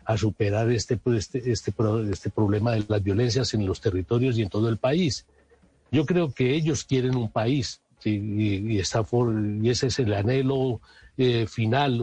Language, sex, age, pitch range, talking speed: Spanish, male, 60-79, 110-145 Hz, 195 wpm